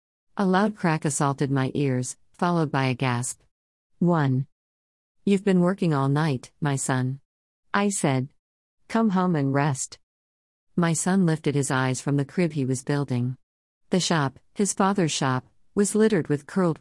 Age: 50-69